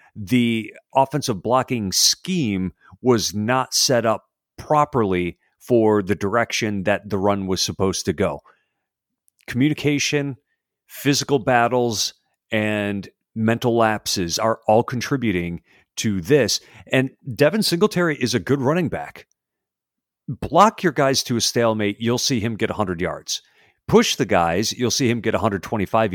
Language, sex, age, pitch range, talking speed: English, male, 40-59, 105-145 Hz, 135 wpm